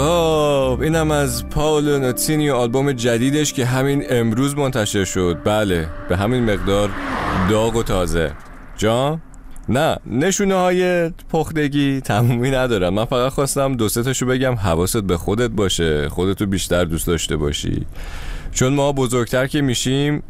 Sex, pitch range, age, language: male, 90-130 Hz, 30-49, Persian